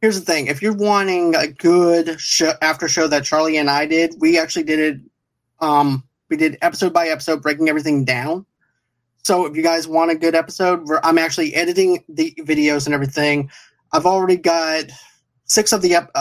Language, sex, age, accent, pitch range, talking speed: English, male, 30-49, American, 150-180 Hz, 195 wpm